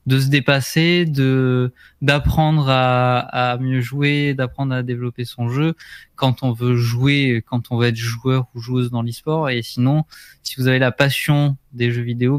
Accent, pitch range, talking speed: French, 125-150 Hz, 180 wpm